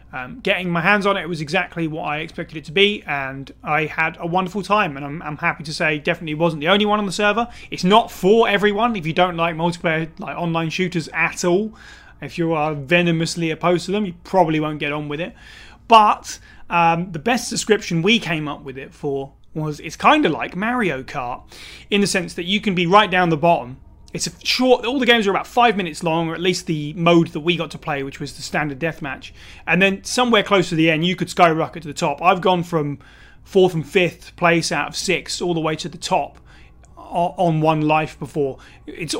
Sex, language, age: male, English, 30-49